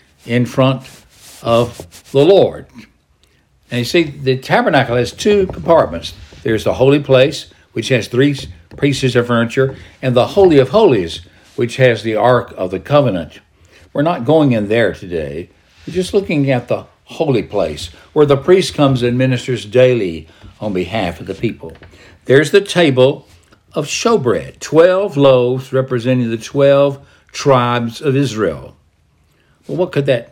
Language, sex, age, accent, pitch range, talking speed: English, male, 60-79, American, 110-140 Hz, 150 wpm